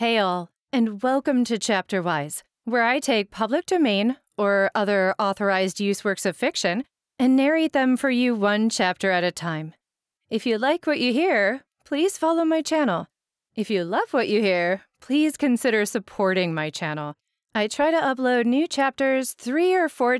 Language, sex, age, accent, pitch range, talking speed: English, female, 30-49, American, 180-255 Hz, 175 wpm